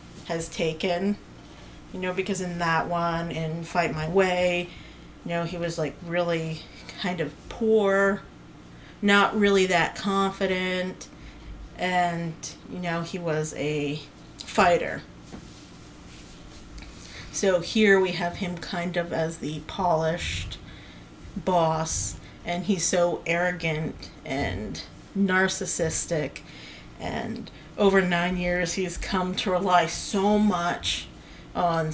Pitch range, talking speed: 165-190 Hz, 115 wpm